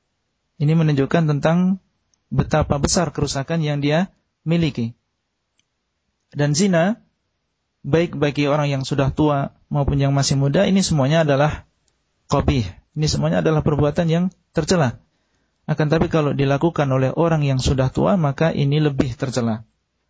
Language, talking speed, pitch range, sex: Indonesian, 130 wpm, 135-170 Hz, male